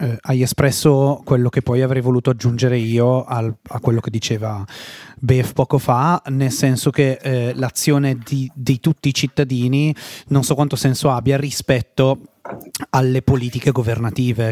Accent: native